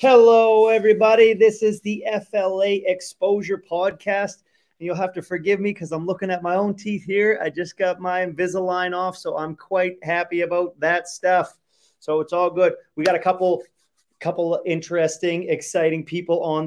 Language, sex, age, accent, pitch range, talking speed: English, male, 30-49, American, 160-190 Hz, 175 wpm